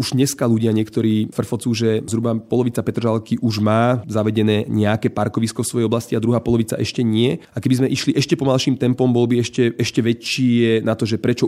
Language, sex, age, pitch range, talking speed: Slovak, male, 30-49, 115-125 Hz, 200 wpm